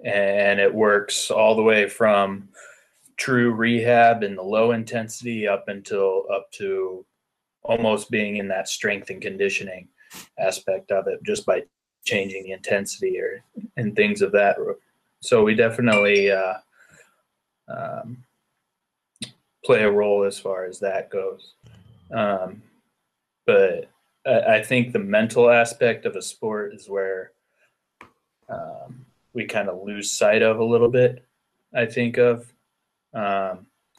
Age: 20-39